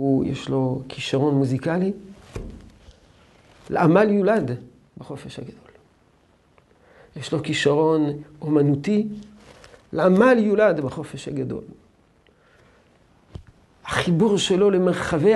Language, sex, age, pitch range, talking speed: Hebrew, male, 50-69, 150-205 Hz, 75 wpm